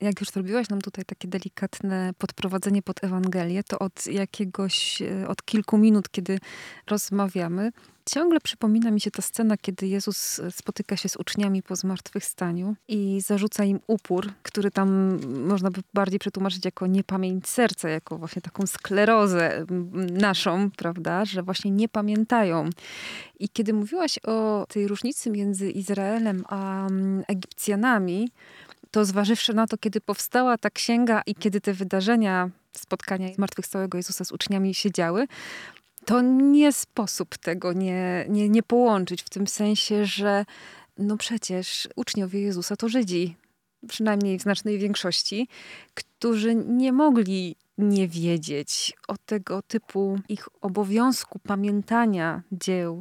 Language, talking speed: Polish, 135 wpm